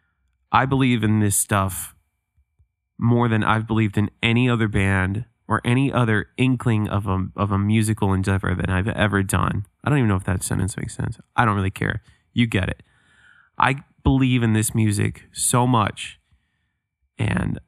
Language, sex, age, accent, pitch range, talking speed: English, male, 20-39, American, 95-115 Hz, 175 wpm